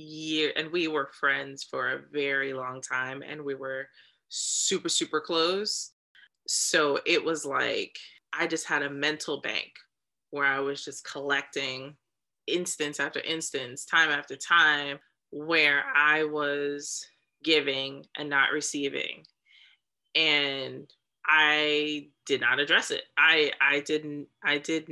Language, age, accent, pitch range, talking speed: English, 20-39, American, 145-190 Hz, 130 wpm